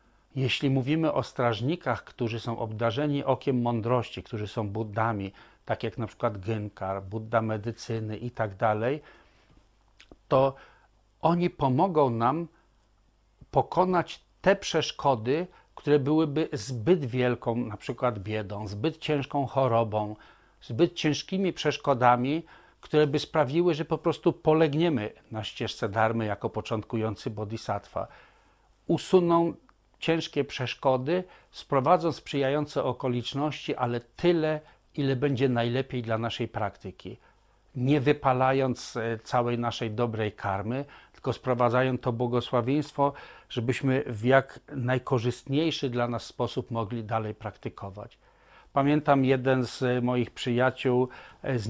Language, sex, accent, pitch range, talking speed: Polish, male, native, 115-145 Hz, 110 wpm